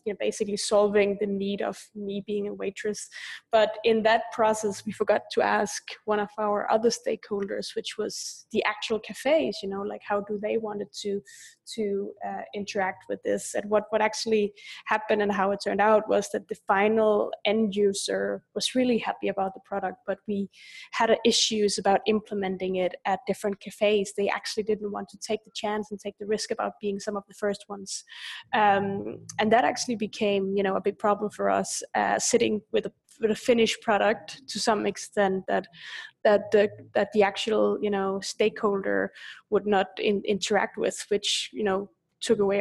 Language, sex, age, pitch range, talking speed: English, female, 20-39, 200-220 Hz, 190 wpm